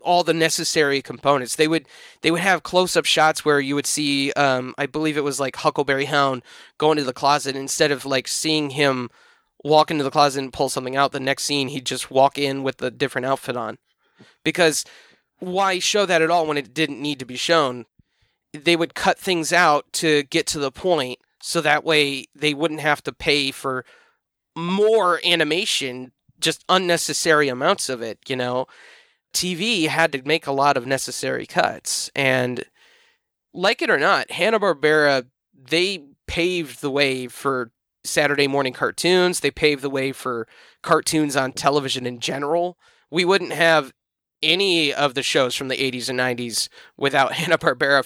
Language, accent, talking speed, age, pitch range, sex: English, American, 175 wpm, 20-39, 135-165 Hz, male